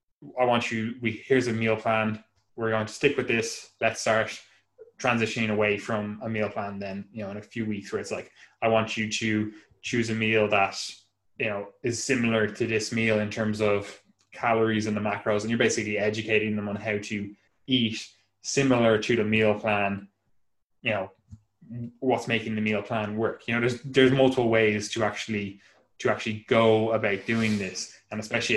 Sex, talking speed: male, 195 wpm